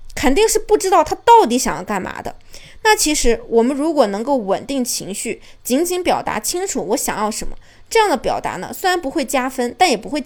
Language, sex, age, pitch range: Chinese, female, 20-39, 215-300 Hz